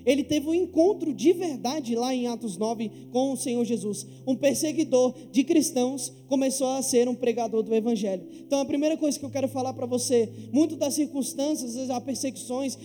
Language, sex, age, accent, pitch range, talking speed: Portuguese, male, 20-39, Brazilian, 255-310 Hz, 185 wpm